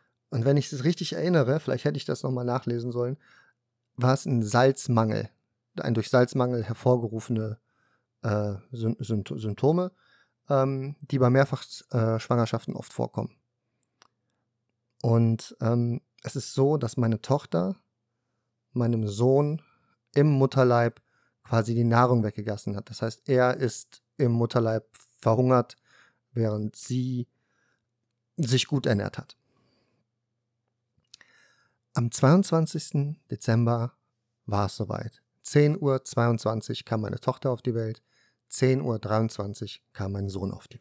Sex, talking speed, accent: male, 120 wpm, German